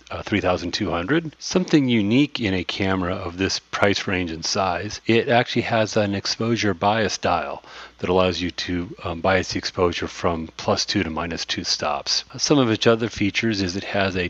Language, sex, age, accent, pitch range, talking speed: English, male, 40-59, American, 90-110 Hz, 185 wpm